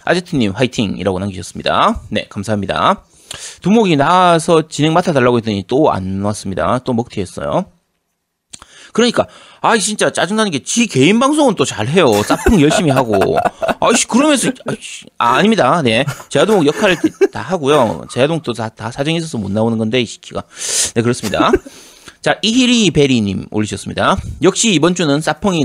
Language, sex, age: Korean, male, 30-49